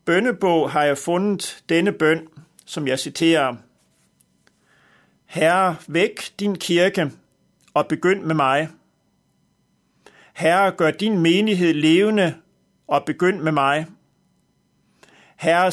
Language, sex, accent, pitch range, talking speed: Danish, male, native, 155-195 Hz, 105 wpm